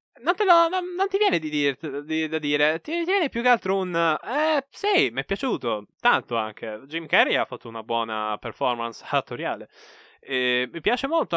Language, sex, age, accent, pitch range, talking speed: Italian, male, 20-39, native, 125-185 Hz, 210 wpm